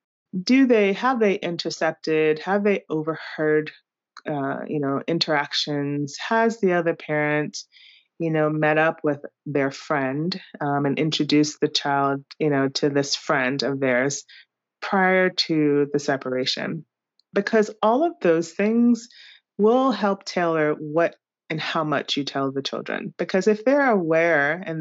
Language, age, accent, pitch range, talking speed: English, 30-49, American, 145-180 Hz, 145 wpm